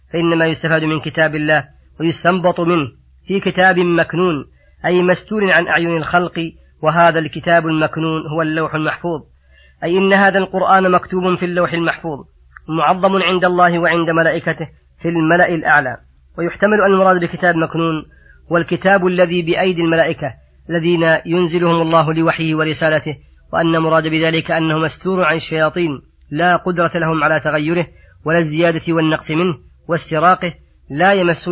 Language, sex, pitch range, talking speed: Arabic, female, 155-175 Hz, 135 wpm